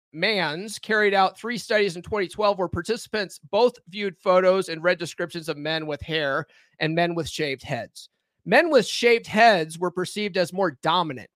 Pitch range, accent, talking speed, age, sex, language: 170-225 Hz, American, 175 wpm, 30-49, male, English